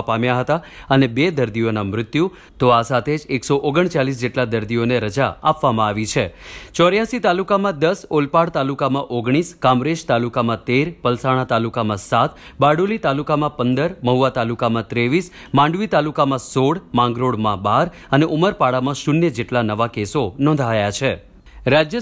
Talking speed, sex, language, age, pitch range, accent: 135 wpm, male, Gujarati, 30-49, 125-160 Hz, native